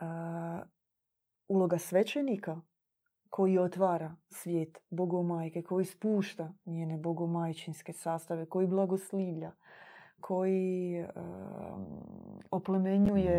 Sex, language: female, Croatian